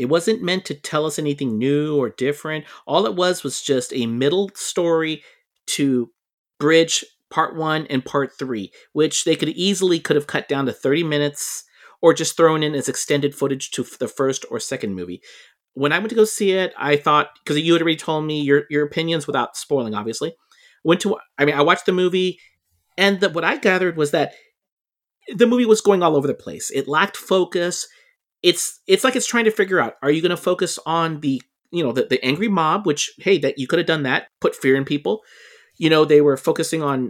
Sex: male